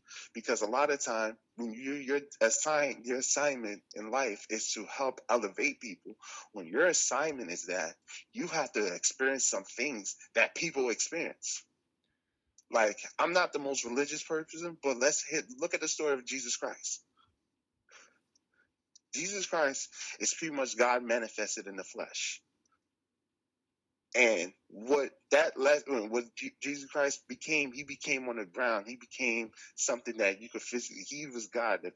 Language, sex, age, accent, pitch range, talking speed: English, male, 30-49, American, 120-150 Hz, 155 wpm